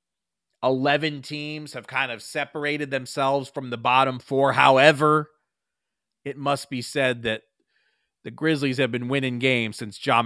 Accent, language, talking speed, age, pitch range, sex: American, English, 145 wpm, 30-49, 110-130 Hz, male